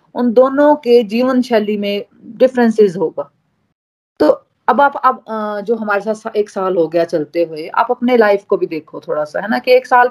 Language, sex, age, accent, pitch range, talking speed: Hindi, female, 30-49, native, 190-245 Hz, 200 wpm